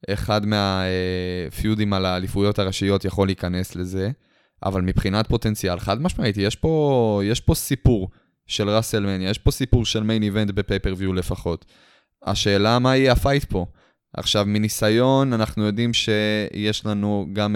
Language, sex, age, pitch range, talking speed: Hebrew, male, 20-39, 95-115 Hz, 135 wpm